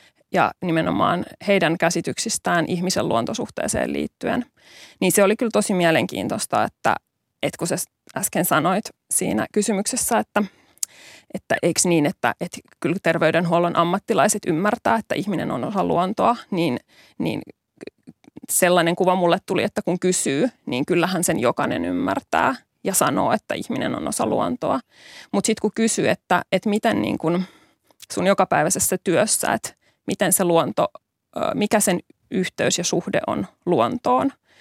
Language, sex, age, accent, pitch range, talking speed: Finnish, female, 20-39, native, 175-225 Hz, 135 wpm